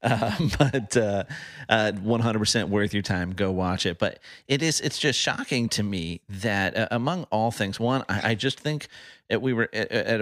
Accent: American